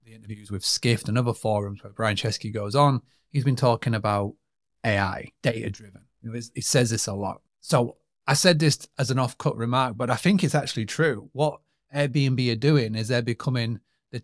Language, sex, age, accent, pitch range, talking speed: English, male, 30-49, British, 115-135 Hz, 185 wpm